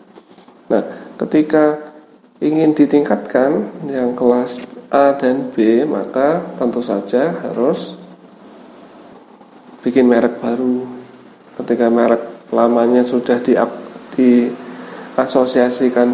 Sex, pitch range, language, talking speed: male, 120-140 Hz, Indonesian, 80 wpm